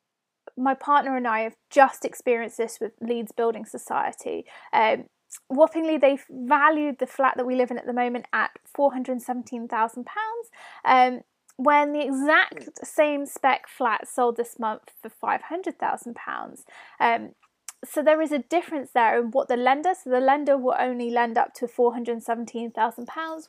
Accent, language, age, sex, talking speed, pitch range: British, English, 20-39, female, 155 wpm, 240-300 Hz